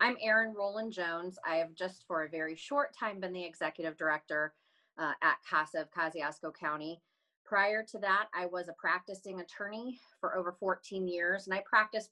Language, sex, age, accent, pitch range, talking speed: English, female, 30-49, American, 160-190 Hz, 185 wpm